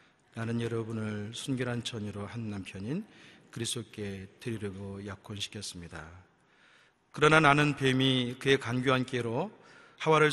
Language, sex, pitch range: Korean, male, 100-130 Hz